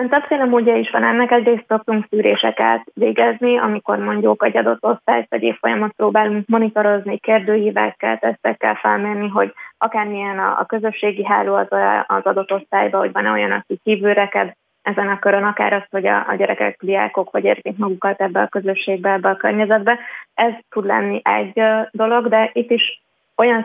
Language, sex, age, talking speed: Hungarian, female, 20-39, 160 wpm